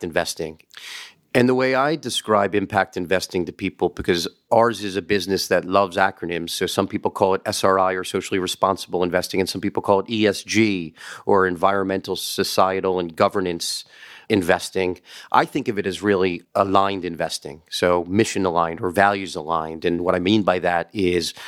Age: 40-59